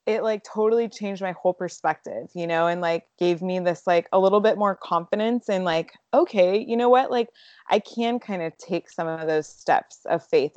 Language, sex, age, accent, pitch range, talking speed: English, female, 20-39, American, 165-195 Hz, 215 wpm